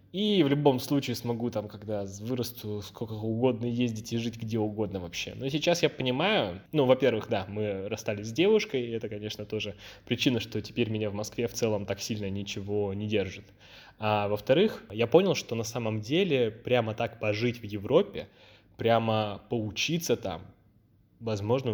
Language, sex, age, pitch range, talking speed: Russian, male, 10-29, 105-140 Hz, 170 wpm